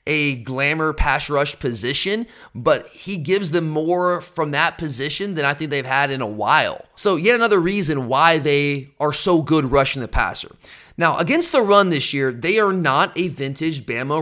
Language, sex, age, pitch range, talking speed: English, male, 30-49, 135-175 Hz, 190 wpm